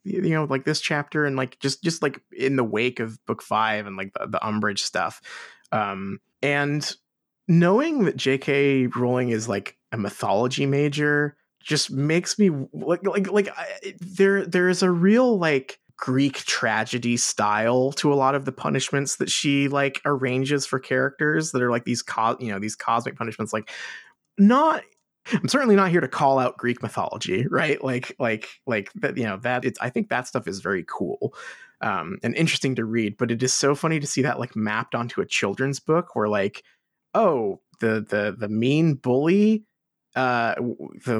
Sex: male